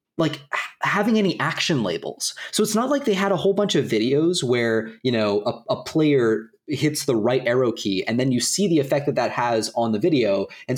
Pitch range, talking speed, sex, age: 125-190 Hz, 225 wpm, male, 30-49